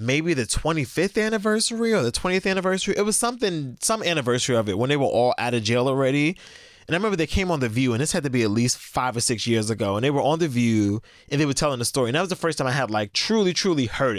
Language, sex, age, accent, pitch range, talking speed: English, male, 20-39, American, 120-155 Hz, 285 wpm